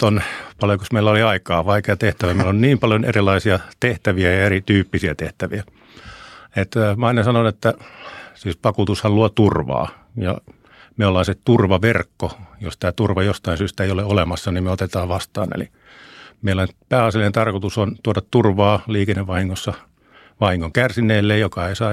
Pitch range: 95-105 Hz